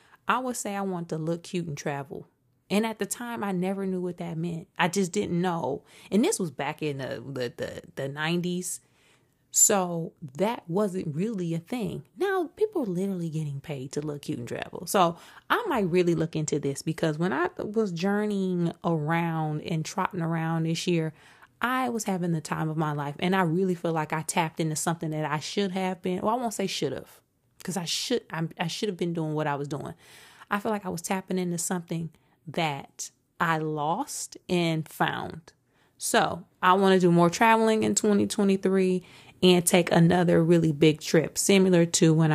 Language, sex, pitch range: English, female, 155-195 Hz